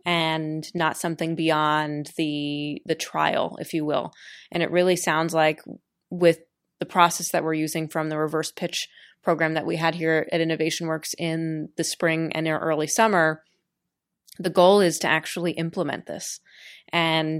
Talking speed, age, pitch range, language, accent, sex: 160 wpm, 20-39, 155-170 Hz, English, American, female